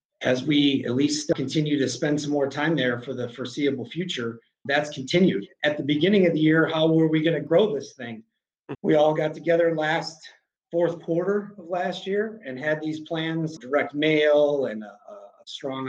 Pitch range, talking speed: 140-170 Hz, 195 wpm